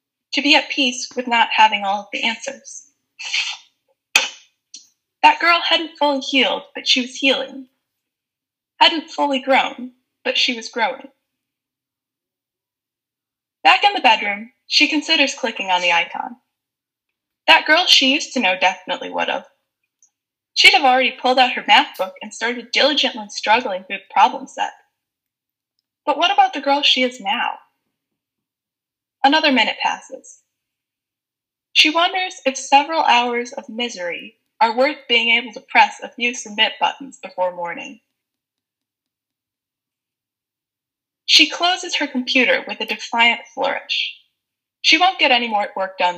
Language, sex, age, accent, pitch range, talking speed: English, female, 10-29, American, 240-300 Hz, 140 wpm